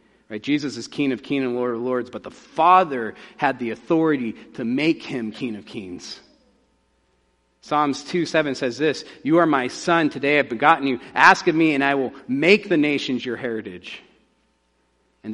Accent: American